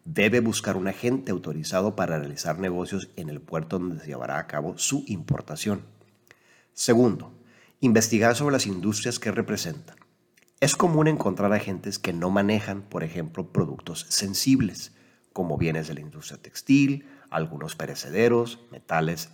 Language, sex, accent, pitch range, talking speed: Spanish, male, Mexican, 90-120 Hz, 140 wpm